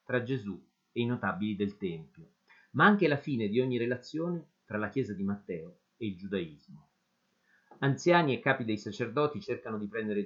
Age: 40-59